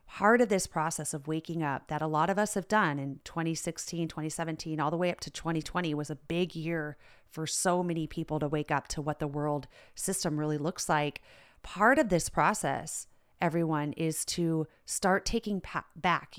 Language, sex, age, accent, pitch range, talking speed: English, female, 30-49, American, 155-190 Hz, 190 wpm